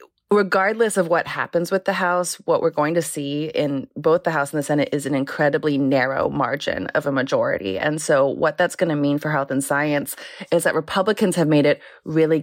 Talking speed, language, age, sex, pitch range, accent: 215 wpm, English, 20-39, female, 140-165 Hz, American